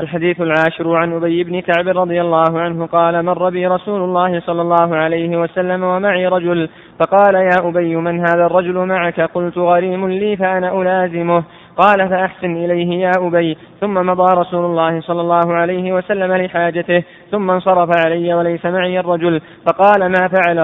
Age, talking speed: 20-39, 160 wpm